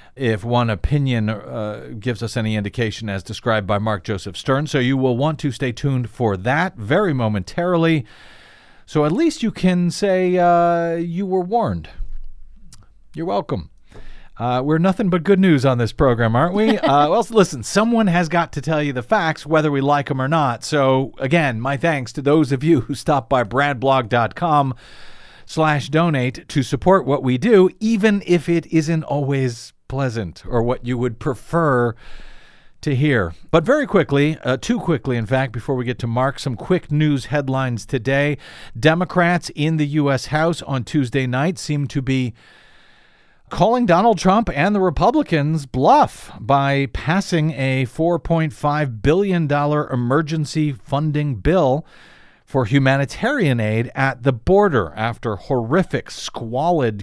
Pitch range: 125-165 Hz